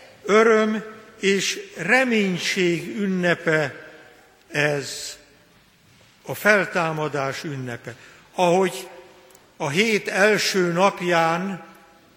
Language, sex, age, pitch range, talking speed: Hungarian, male, 60-79, 165-200 Hz, 65 wpm